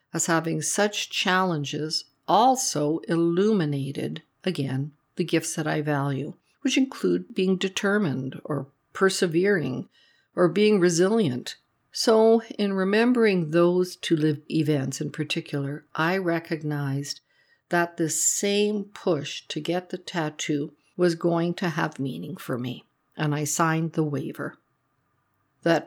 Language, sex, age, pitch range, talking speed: English, female, 50-69, 155-200 Hz, 125 wpm